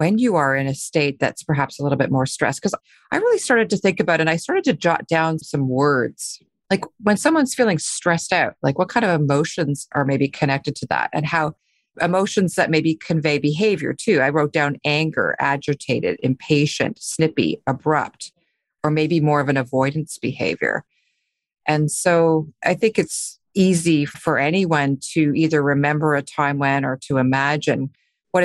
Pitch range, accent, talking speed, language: 140-175 Hz, American, 180 wpm, English